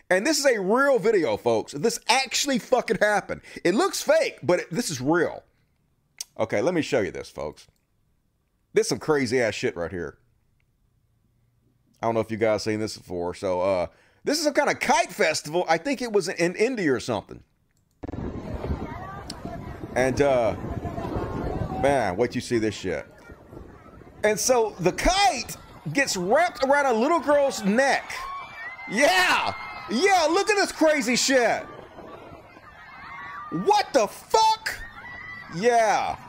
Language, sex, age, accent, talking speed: English, male, 40-59, American, 150 wpm